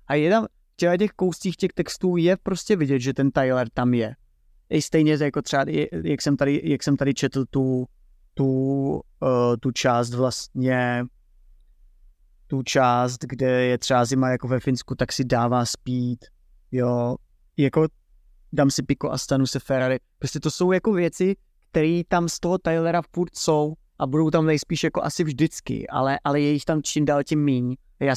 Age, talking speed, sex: 20-39, 170 wpm, male